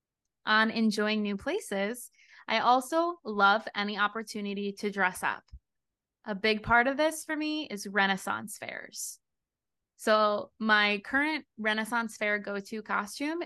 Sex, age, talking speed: female, 20-39, 130 wpm